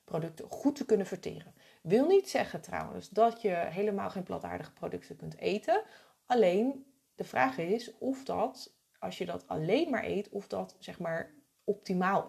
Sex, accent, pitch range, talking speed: female, Dutch, 200-245 Hz, 165 wpm